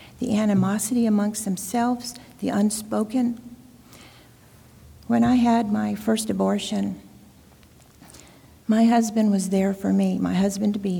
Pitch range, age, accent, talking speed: 195-245 Hz, 50-69, American, 110 wpm